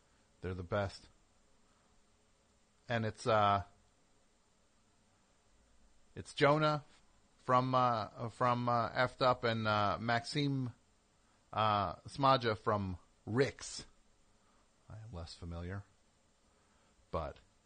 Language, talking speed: English, 85 wpm